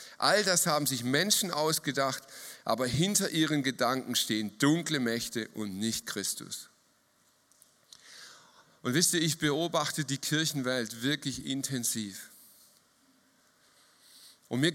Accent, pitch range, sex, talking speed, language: German, 120-145 Hz, male, 110 wpm, German